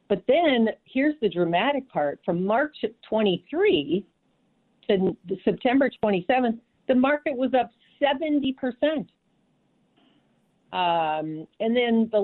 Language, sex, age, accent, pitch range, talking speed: English, female, 50-69, American, 160-225 Hz, 105 wpm